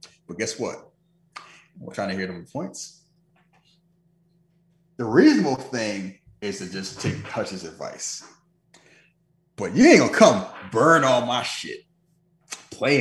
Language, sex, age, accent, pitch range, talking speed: English, male, 30-49, American, 105-170 Hz, 135 wpm